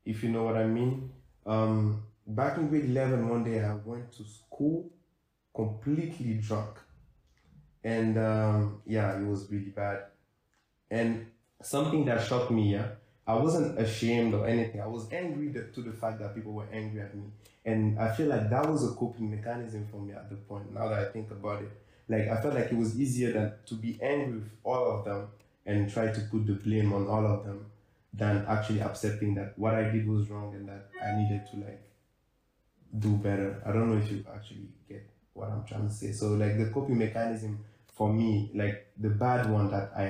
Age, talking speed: 20-39, 205 wpm